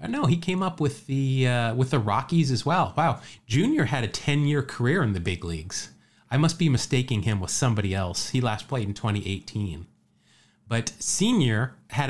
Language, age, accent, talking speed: English, 30-49, American, 195 wpm